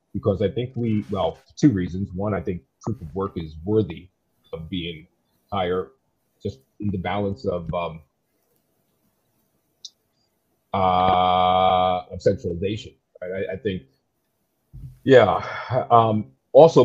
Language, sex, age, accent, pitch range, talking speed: English, male, 40-59, American, 90-110 Hz, 120 wpm